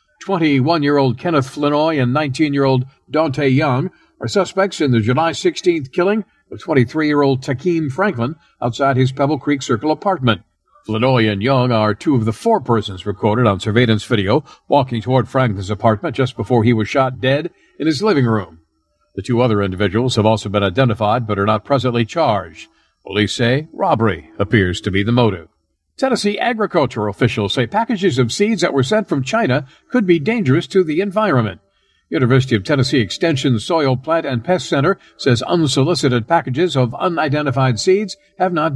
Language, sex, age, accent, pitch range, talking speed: English, male, 50-69, American, 115-160 Hz, 165 wpm